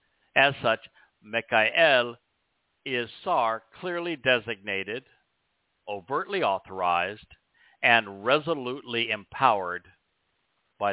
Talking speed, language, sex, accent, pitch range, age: 70 wpm, English, male, American, 105-145 Hz, 60-79